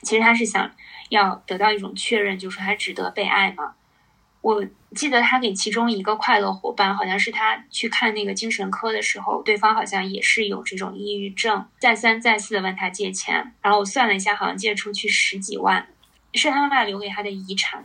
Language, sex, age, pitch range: Chinese, female, 20-39, 200-230 Hz